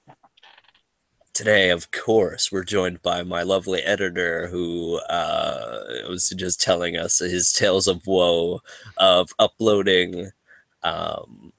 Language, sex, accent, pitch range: English, male, American, 90-110 Hz